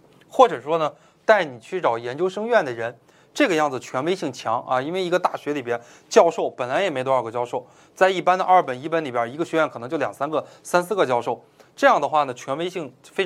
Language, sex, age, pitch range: Chinese, male, 20-39, 125-180 Hz